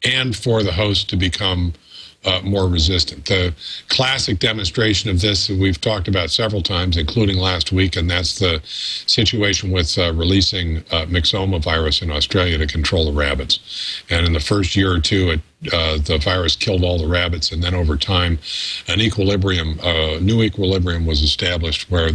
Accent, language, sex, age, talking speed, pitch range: American, English, male, 50-69, 175 wpm, 80-100 Hz